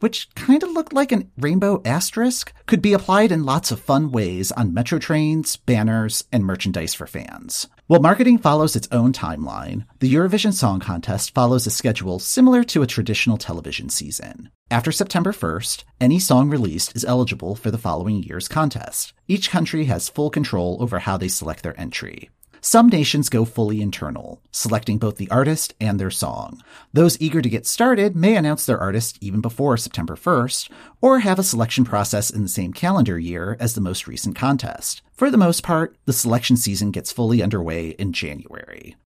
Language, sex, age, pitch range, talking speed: English, male, 40-59, 100-155 Hz, 185 wpm